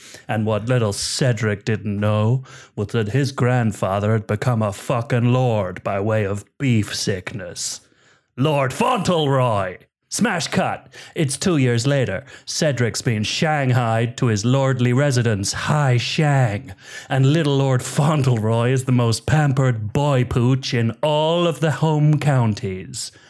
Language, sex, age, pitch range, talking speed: English, male, 30-49, 110-145 Hz, 135 wpm